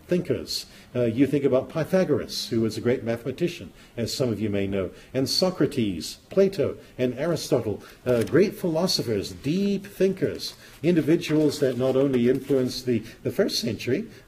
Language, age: English, 50-69